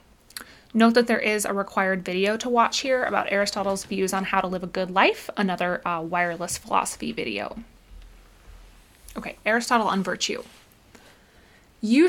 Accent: American